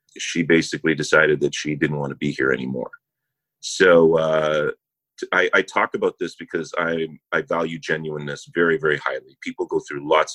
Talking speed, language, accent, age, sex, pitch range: 175 wpm, English, American, 30-49, male, 80-125 Hz